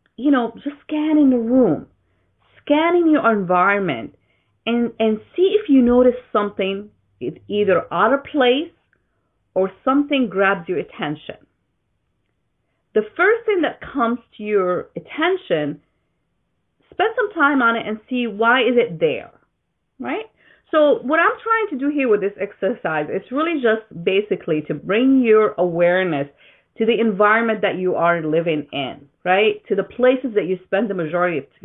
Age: 40-59